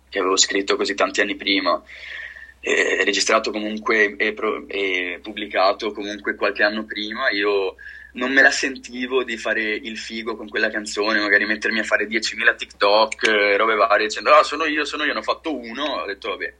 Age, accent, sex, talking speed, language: 20-39, native, male, 190 wpm, Italian